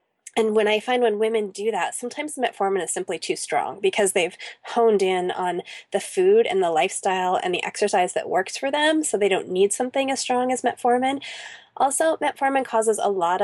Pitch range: 200-265 Hz